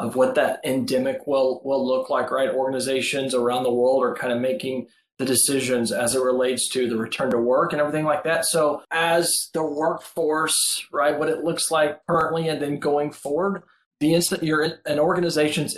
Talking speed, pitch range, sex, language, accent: 195 wpm, 130-160 Hz, male, English, American